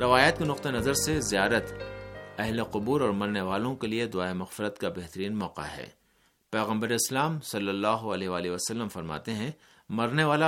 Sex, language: male, Urdu